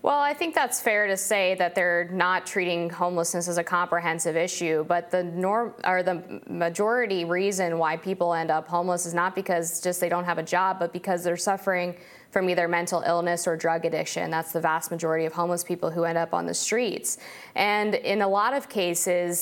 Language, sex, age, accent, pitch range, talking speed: English, female, 20-39, American, 170-190 Hz, 205 wpm